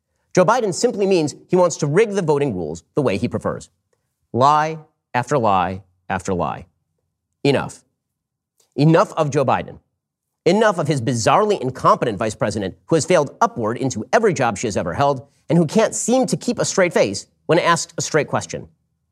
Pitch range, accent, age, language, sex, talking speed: 125-185 Hz, American, 40-59, English, male, 180 wpm